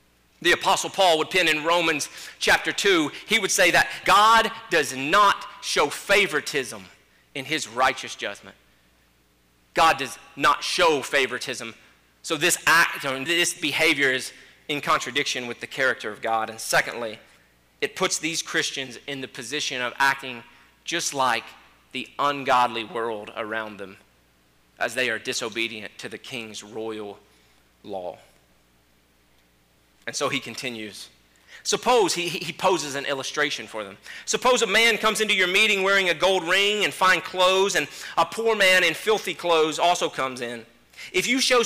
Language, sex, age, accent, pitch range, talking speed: English, male, 30-49, American, 115-190 Hz, 155 wpm